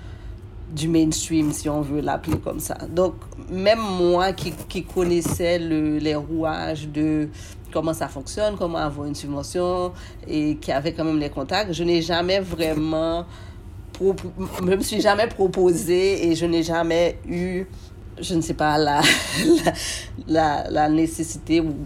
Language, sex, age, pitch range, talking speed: French, female, 40-59, 150-170 Hz, 155 wpm